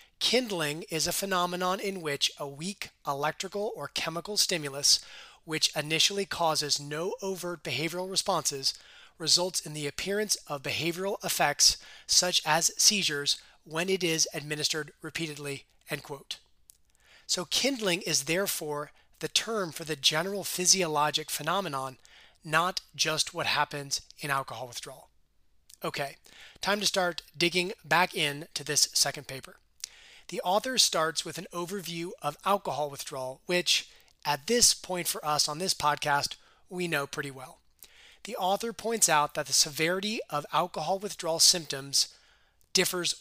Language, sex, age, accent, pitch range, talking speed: English, male, 30-49, American, 150-185 Hz, 135 wpm